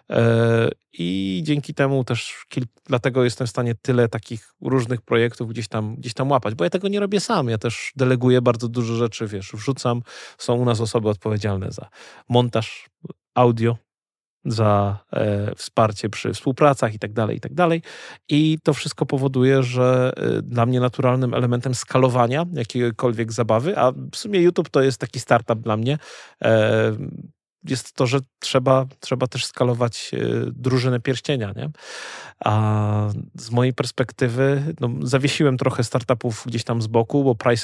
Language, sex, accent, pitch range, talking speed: Polish, male, native, 110-135 Hz, 150 wpm